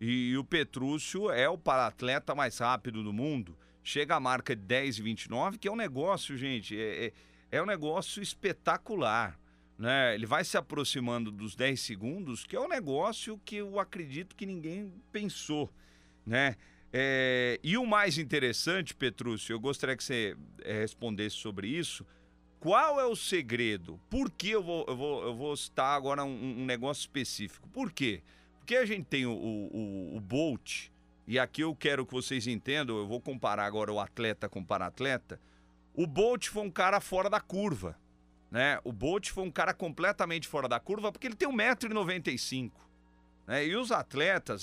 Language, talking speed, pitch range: Portuguese, 175 wpm, 110-175 Hz